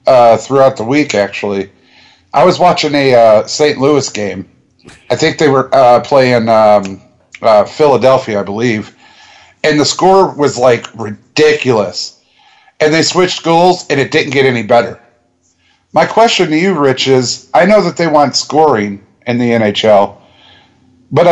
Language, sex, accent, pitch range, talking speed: English, male, American, 125-155 Hz, 160 wpm